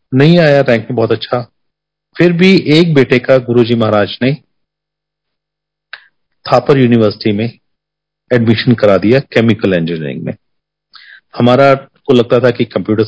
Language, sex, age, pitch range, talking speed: Hindi, male, 40-59, 115-145 Hz, 135 wpm